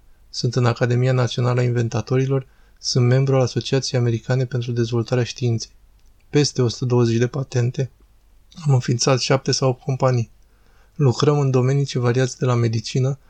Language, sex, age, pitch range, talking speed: Romanian, male, 20-39, 120-135 Hz, 145 wpm